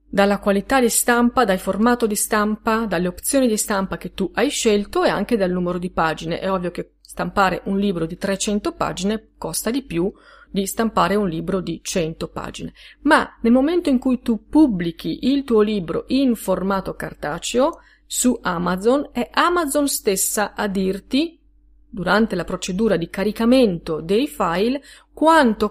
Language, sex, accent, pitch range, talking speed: Italian, female, native, 185-250 Hz, 160 wpm